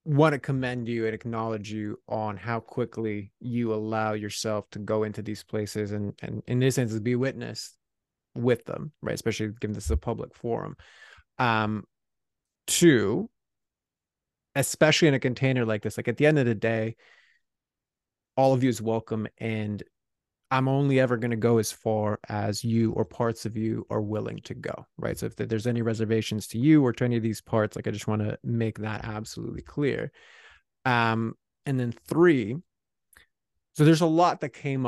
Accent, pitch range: American, 110-125 Hz